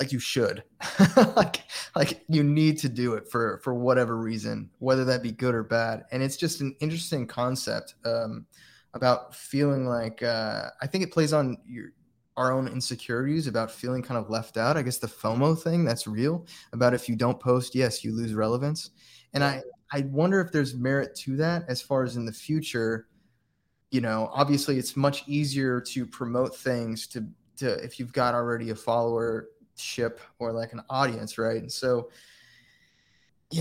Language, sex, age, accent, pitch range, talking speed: English, male, 20-39, American, 115-140 Hz, 185 wpm